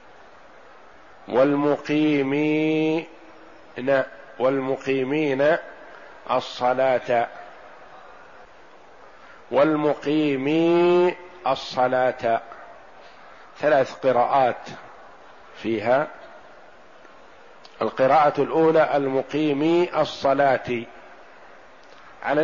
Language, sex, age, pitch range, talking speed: Arabic, male, 50-69, 130-155 Hz, 30 wpm